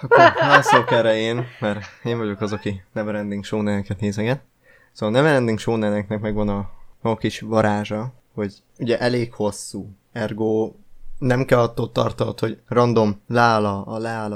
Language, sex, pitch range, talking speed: Hungarian, male, 105-115 Hz, 155 wpm